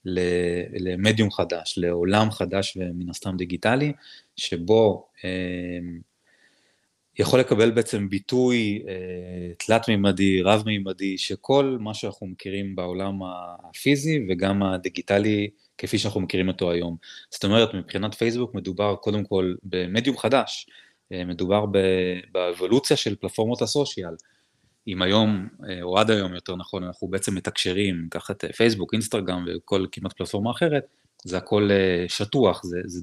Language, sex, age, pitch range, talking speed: Hebrew, male, 20-39, 90-110 Hz, 115 wpm